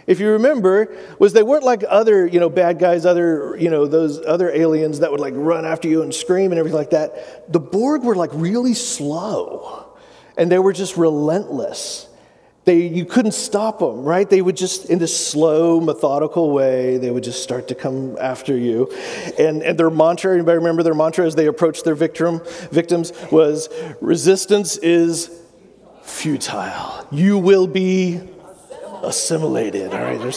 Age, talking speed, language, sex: 40-59, 170 wpm, English, male